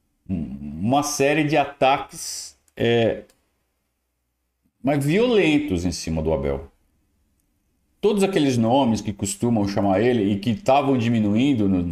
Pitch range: 95-140 Hz